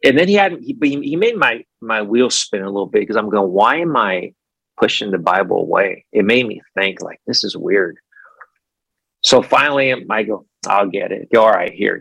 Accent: American